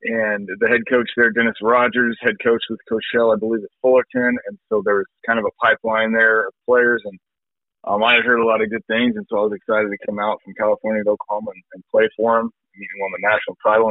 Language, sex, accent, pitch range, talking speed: English, male, American, 100-115 Hz, 265 wpm